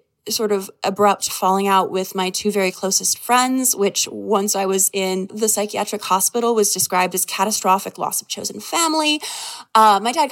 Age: 20-39